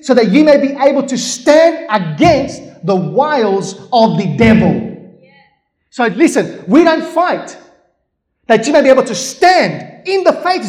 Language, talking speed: English, 165 wpm